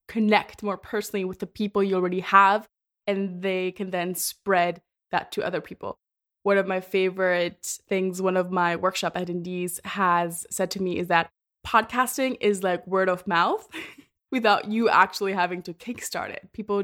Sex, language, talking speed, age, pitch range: female, English, 170 wpm, 20-39, 180-220 Hz